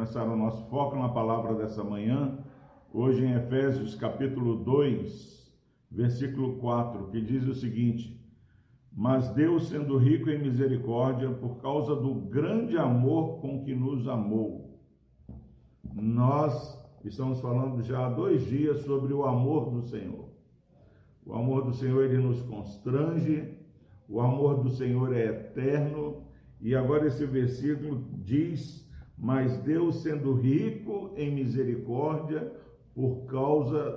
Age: 50-69